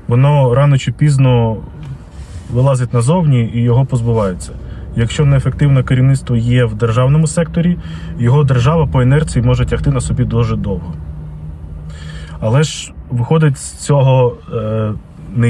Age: 20-39